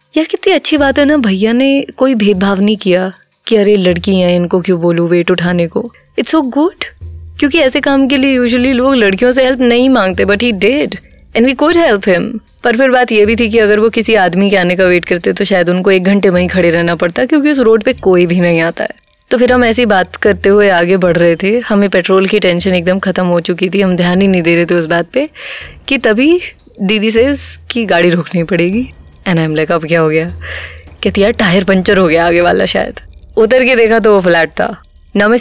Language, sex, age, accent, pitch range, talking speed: Hindi, female, 20-39, native, 180-245 Hz, 215 wpm